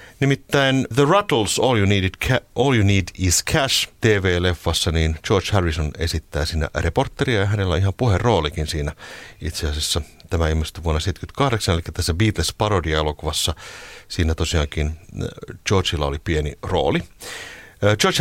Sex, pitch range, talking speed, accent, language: male, 85-110 Hz, 140 wpm, native, Finnish